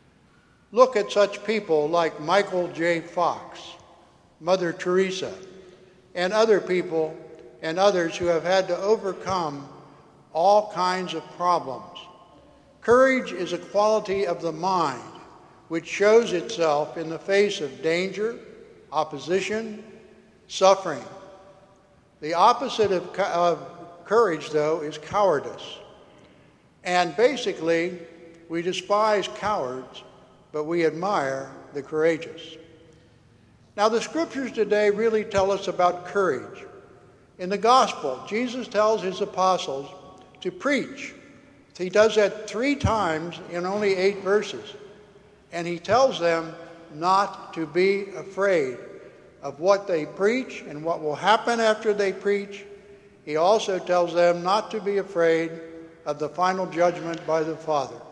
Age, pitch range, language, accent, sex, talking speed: 60-79, 165-205 Hz, English, American, male, 125 wpm